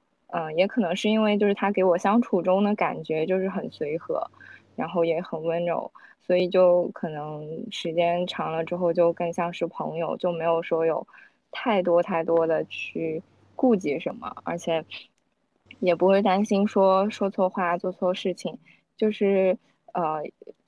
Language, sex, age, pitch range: Chinese, female, 20-39, 170-200 Hz